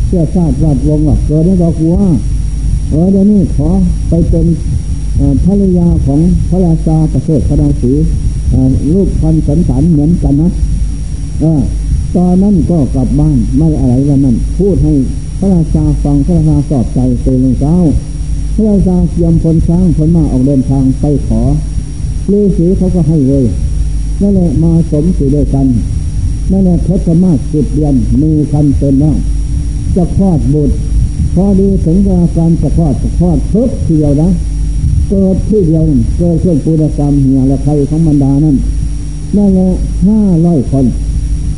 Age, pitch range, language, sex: 60-79, 130-170 Hz, Thai, male